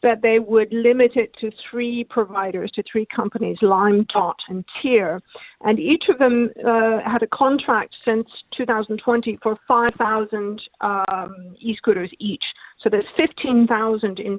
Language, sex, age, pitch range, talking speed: English, female, 50-69, 205-235 Hz, 140 wpm